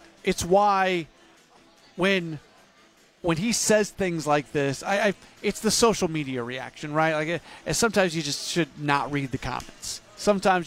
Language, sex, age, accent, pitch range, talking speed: English, male, 40-59, American, 145-190 Hz, 155 wpm